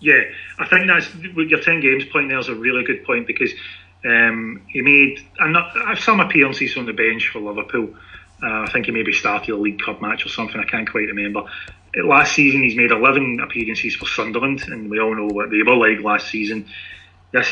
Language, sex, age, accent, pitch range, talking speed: English, male, 30-49, British, 105-140 Hz, 210 wpm